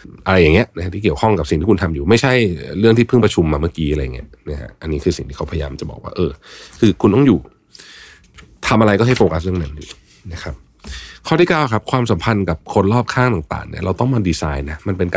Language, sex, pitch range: Thai, male, 80-105 Hz